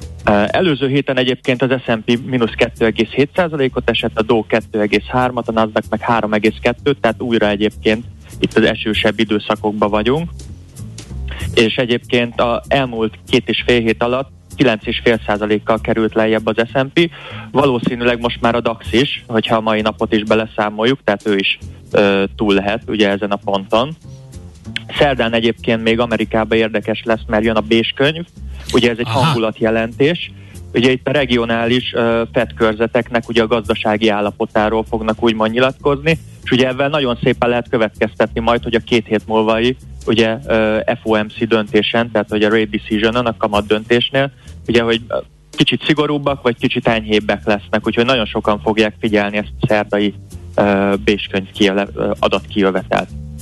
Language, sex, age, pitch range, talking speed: Hungarian, male, 20-39, 105-120 Hz, 145 wpm